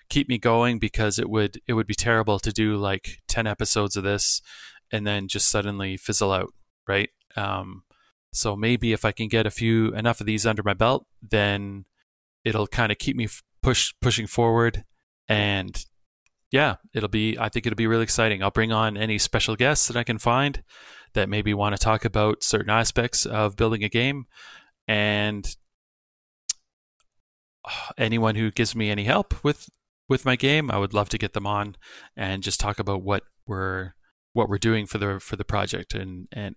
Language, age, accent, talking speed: English, 30-49, American, 185 wpm